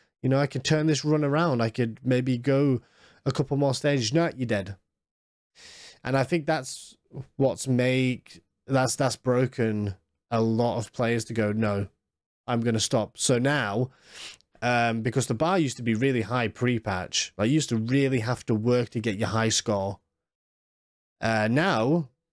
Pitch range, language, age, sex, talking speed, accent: 110-135 Hz, English, 20-39, male, 185 wpm, British